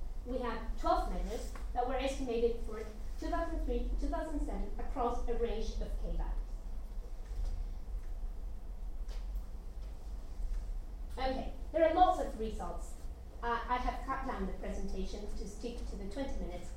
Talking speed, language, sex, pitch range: 120 wpm, English, female, 220-325 Hz